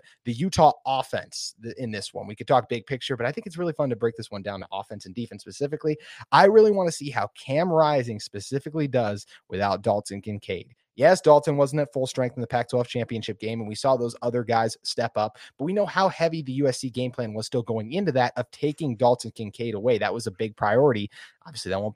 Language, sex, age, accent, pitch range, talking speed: English, male, 30-49, American, 115-140 Hz, 235 wpm